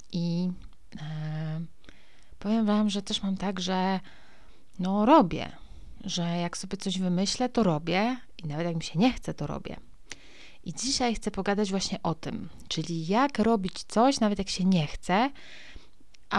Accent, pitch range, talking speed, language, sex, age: native, 170-205 Hz, 155 wpm, Polish, female, 30-49